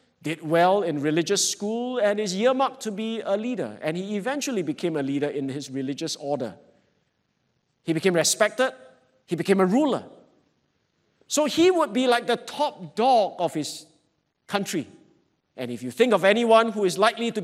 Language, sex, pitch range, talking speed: English, male, 150-215 Hz, 170 wpm